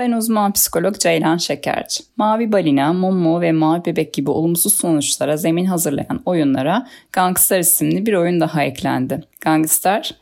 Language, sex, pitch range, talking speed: Turkish, female, 155-210 Hz, 140 wpm